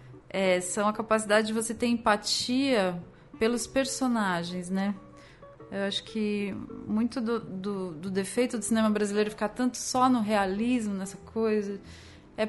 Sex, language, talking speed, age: female, Portuguese, 135 wpm, 20-39